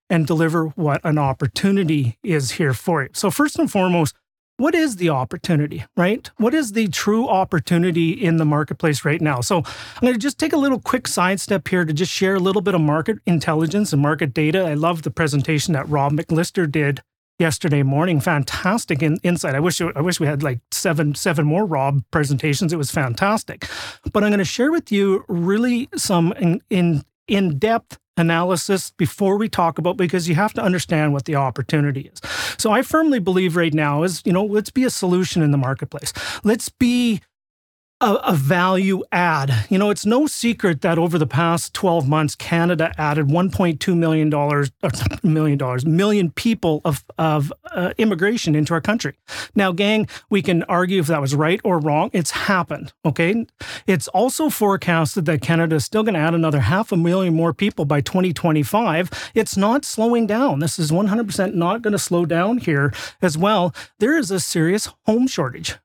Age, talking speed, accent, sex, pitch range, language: 30-49, 190 wpm, American, male, 155-200 Hz, English